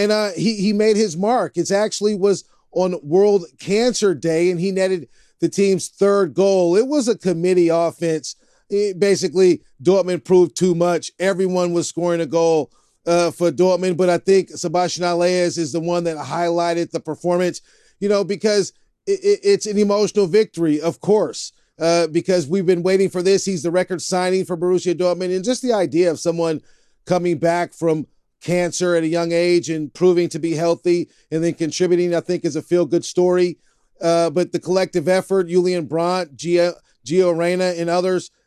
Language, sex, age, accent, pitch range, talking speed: English, male, 40-59, American, 170-185 Hz, 185 wpm